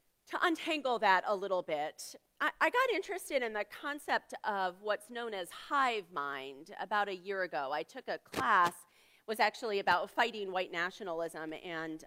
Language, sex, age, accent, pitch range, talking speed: English, female, 40-59, American, 180-255 Hz, 170 wpm